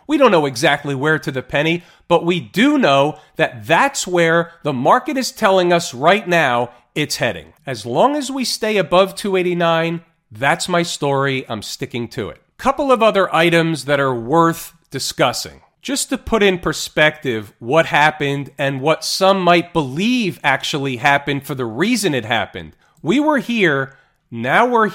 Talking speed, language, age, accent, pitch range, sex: 170 wpm, English, 40-59, American, 150-190 Hz, male